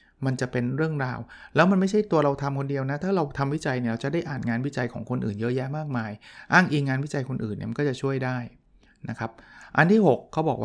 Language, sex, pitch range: Thai, male, 115-145 Hz